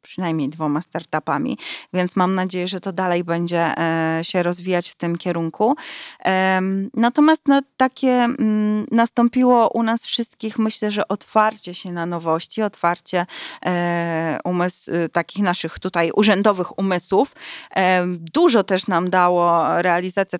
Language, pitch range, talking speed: Polish, 175-215 Hz, 110 wpm